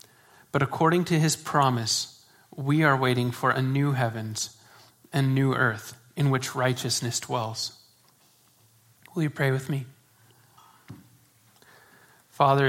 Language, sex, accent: English, male, American